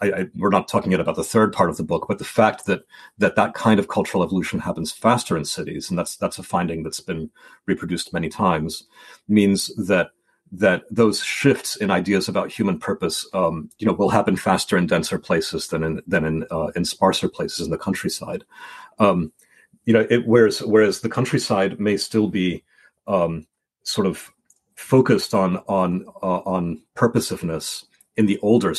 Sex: male